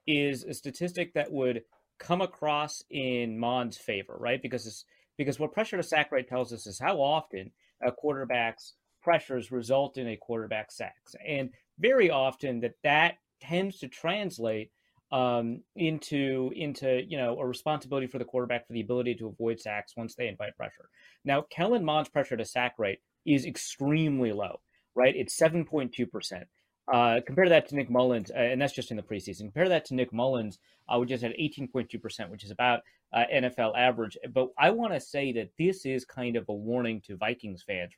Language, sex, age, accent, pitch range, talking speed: English, male, 30-49, American, 120-150 Hz, 185 wpm